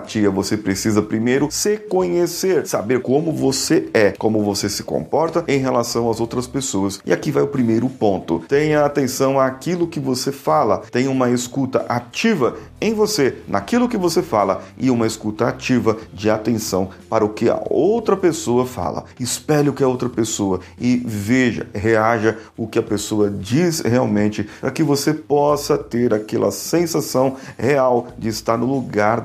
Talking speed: 165 wpm